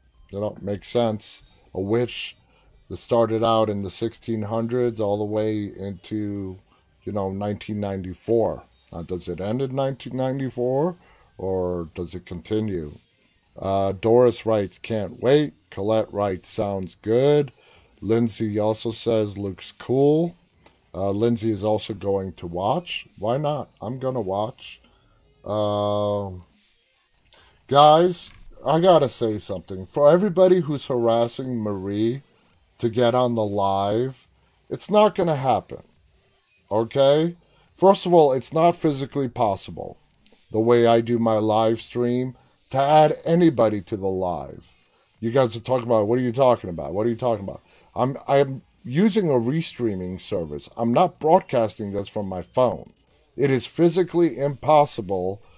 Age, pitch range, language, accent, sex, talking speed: 30-49, 100-130 Hz, English, American, male, 145 wpm